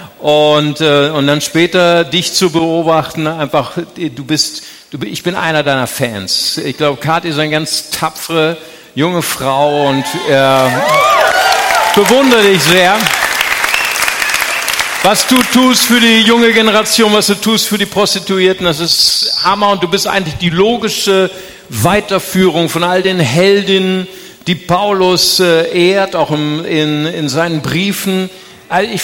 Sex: male